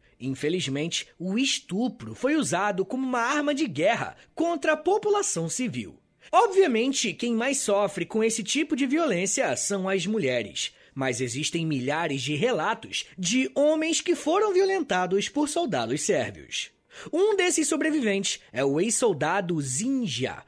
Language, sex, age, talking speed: Portuguese, male, 20-39, 135 wpm